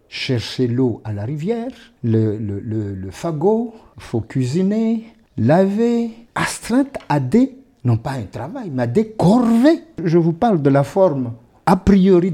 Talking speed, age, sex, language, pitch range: 160 wpm, 50-69, male, French, 115-185 Hz